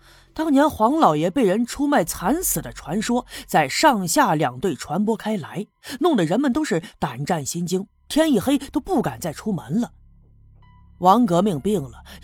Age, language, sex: 30-49, Chinese, female